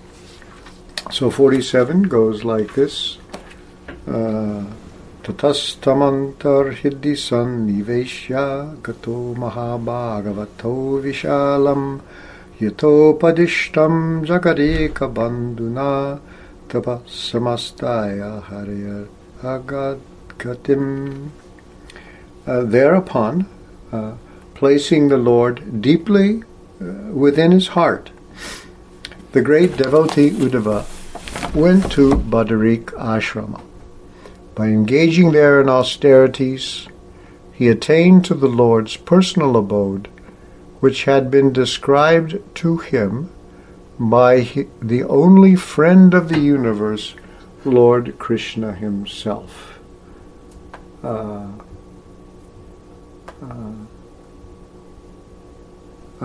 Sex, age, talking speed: male, 60-79, 70 wpm